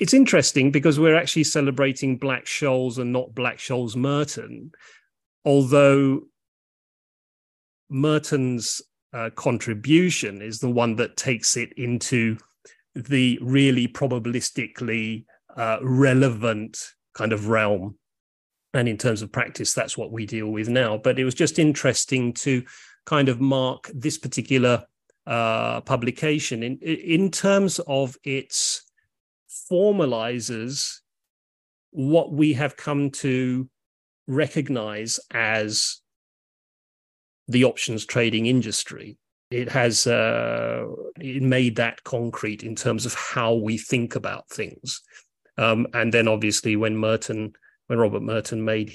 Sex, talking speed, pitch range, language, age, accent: male, 120 wpm, 110-135 Hz, English, 30-49, British